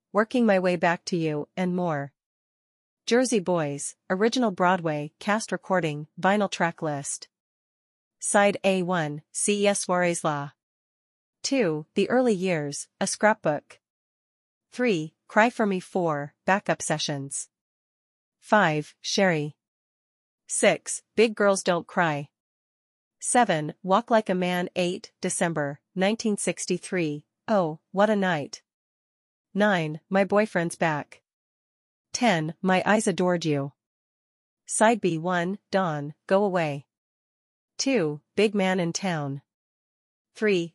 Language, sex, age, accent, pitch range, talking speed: English, female, 40-59, American, 150-200 Hz, 110 wpm